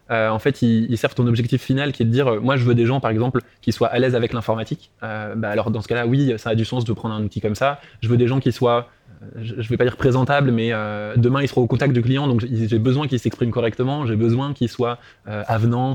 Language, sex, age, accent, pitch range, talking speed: French, male, 20-39, French, 115-135 Hz, 280 wpm